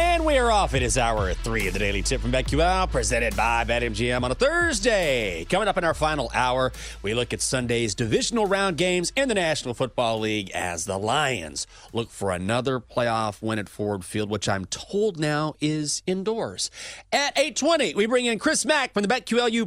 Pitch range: 95-145 Hz